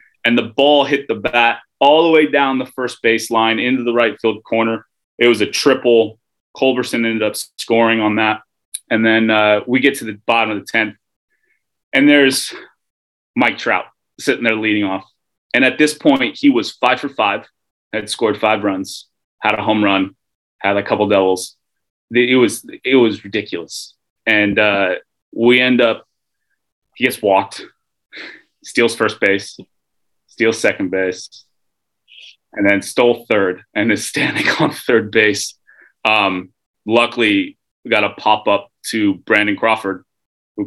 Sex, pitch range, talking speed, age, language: male, 100-120 Hz, 155 wpm, 30-49, English